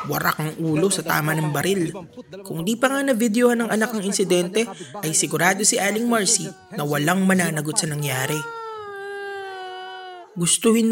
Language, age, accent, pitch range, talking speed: English, 20-39, Filipino, 165-220 Hz, 155 wpm